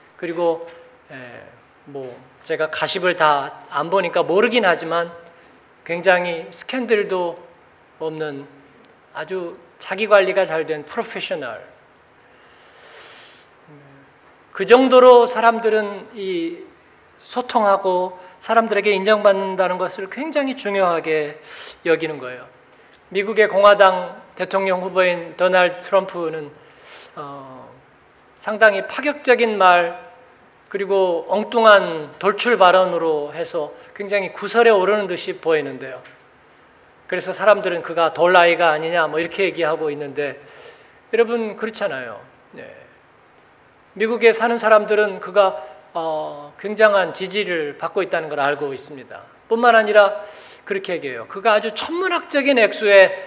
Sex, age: male, 40-59